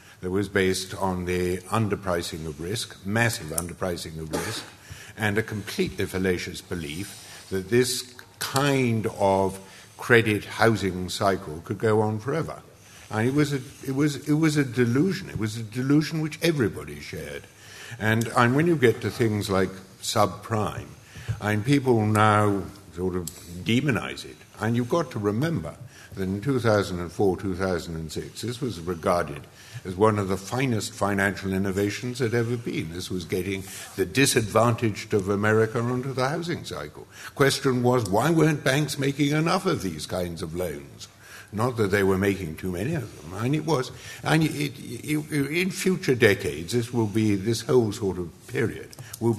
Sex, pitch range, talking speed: male, 95-125 Hz, 160 wpm